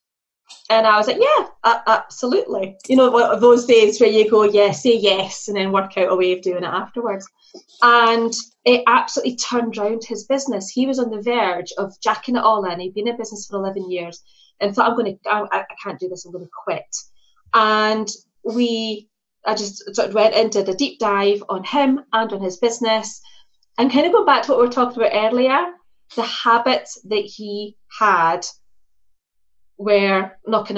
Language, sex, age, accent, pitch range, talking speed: English, female, 30-49, British, 195-240 Hz, 195 wpm